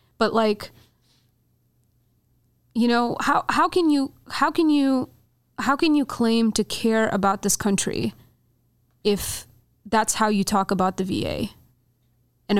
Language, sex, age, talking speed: English, female, 20-39, 140 wpm